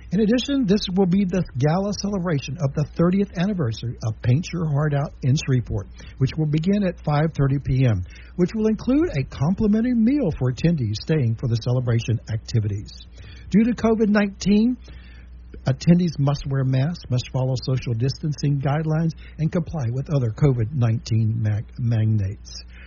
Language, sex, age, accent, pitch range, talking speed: English, male, 60-79, American, 120-165 Hz, 145 wpm